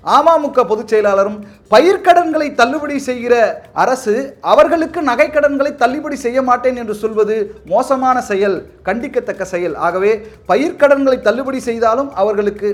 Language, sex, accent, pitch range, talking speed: Tamil, male, native, 165-235 Hz, 110 wpm